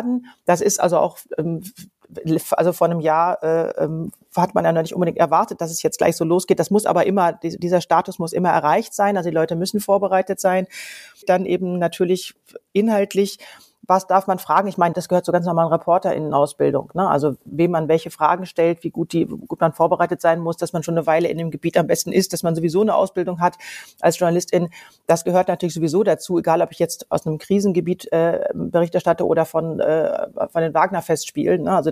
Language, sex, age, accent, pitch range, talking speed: German, female, 40-59, German, 165-185 Hz, 210 wpm